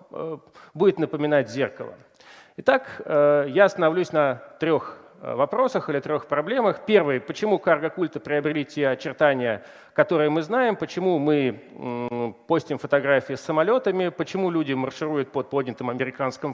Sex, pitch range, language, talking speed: male, 140-180 Hz, Russian, 120 wpm